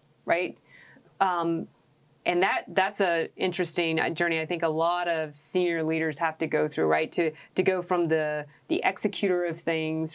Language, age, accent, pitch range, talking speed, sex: English, 30-49, American, 155-185 Hz, 170 wpm, female